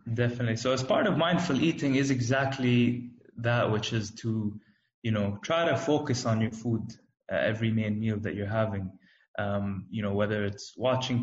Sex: male